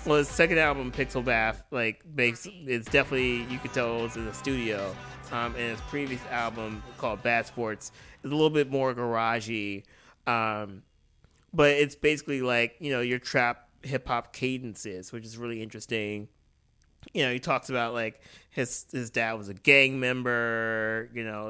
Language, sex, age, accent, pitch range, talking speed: English, male, 30-49, American, 110-130 Hz, 175 wpm